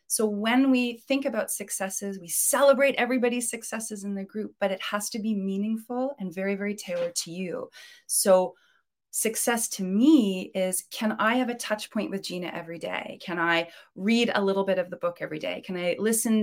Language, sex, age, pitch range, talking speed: English, female, 30-49, 185-235 Hz, 195 wpm